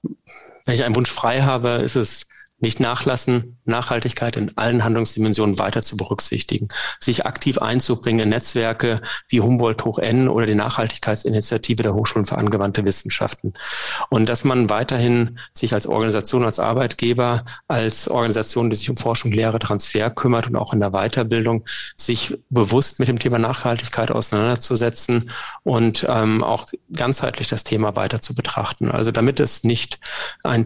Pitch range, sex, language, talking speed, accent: 110-125 Hz, male, German, 155 wpm, German